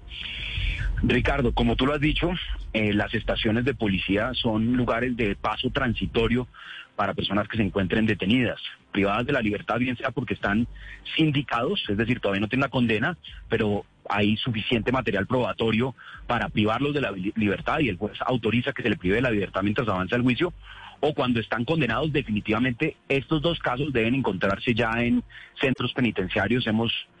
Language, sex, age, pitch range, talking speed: Spanish, male, 30-49, 105-125 Hz, 170 wpm